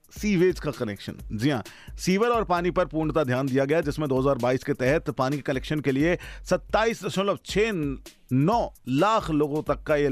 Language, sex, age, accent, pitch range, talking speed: Hindi, male, 40-59, native, 125-165 Hz, 185 wpm